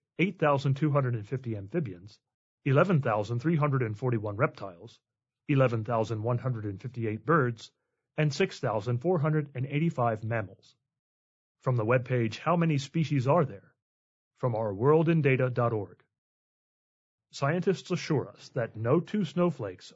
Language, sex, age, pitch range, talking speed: English, male, 30-49, 120-155 Hz, 80 wpm